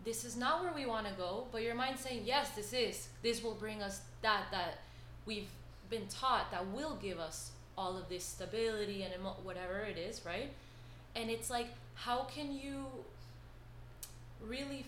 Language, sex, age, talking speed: English, female, 20-39, 175 wpm